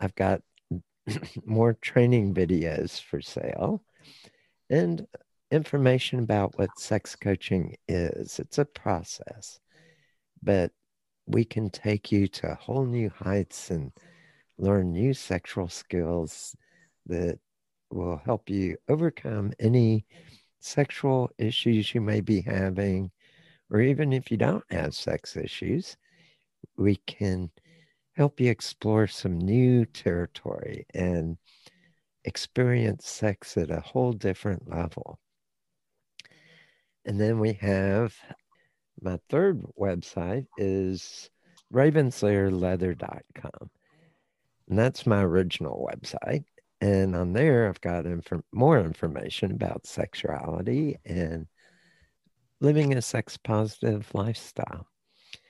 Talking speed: 105 wpm